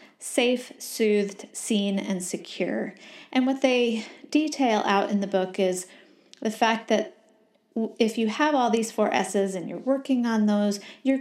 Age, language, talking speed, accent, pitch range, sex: 30-49, English, 160 wpm, American, 200-275 Hz, female